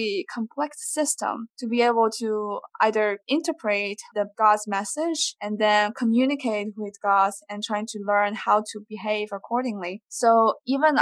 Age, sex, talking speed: 20-39, female, 140 wpm